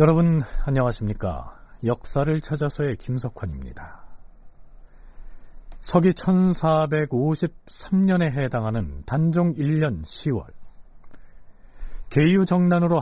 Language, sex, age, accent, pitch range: Korean, male, 40-59, native, 115-170 Hz